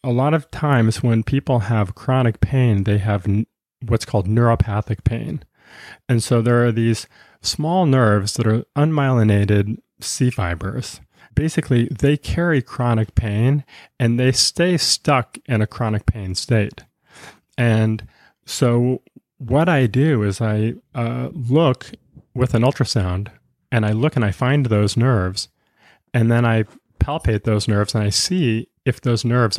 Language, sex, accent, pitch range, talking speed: English, male, American, 110-135 Hz, 150 wpm